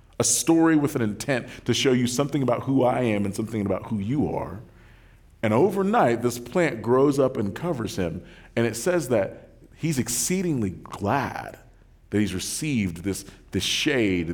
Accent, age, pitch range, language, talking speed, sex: American, 40-59, 100-140 Hz, English, 170 wpm, male